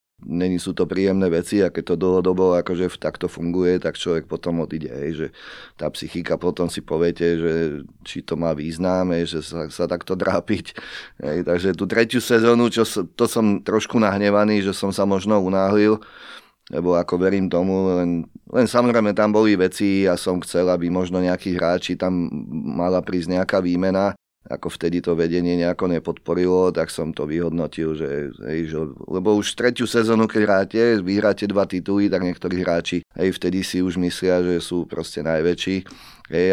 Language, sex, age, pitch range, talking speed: Slovak, male, 30-49, 85-100 Hz, 170 wpm